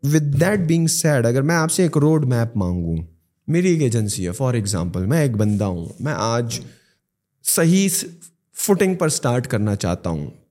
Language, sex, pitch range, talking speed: Urdu, male, 115-155 Hz, 175 wpm